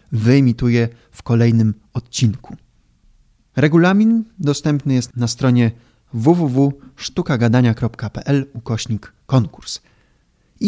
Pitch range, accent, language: 115-140 Hz, native, Polish